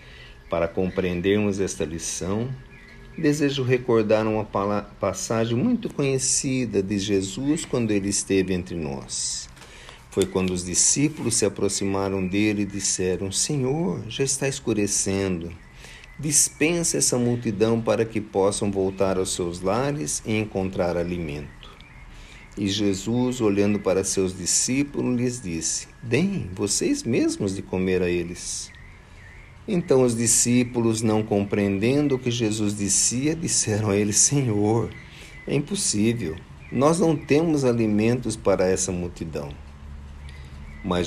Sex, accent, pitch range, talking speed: male, Brazilian, 85-120 Hz, 120 wpm